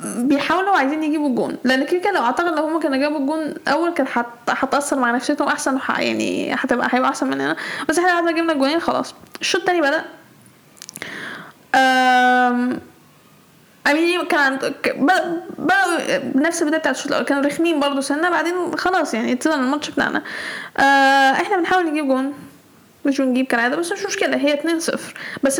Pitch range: 270-335 Hz